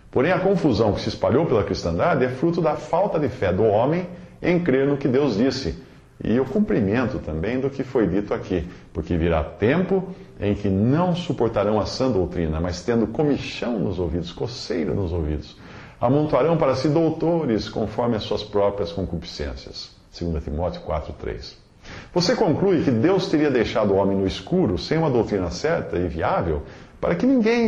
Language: English